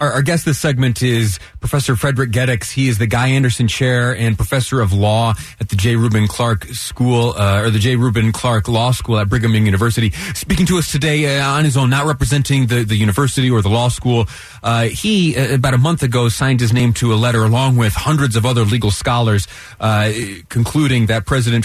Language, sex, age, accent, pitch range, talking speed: English, male, 30-49, American, 110-135 Hz, 210 wpm